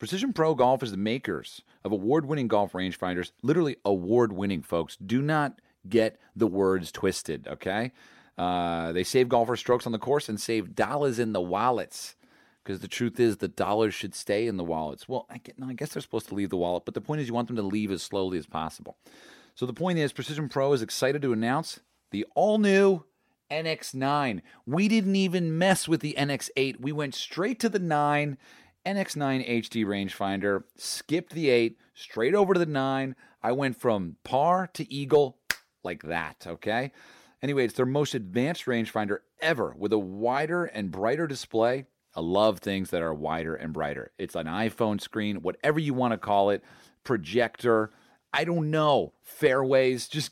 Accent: American